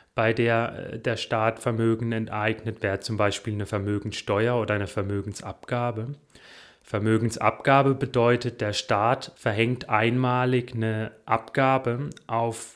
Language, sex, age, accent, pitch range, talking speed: German, male, 30-49, German, 110-125 Hz, 110 wpm